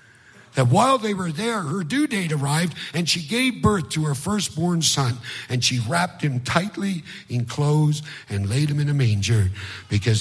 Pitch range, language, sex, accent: 115-150 Hz, English, male, American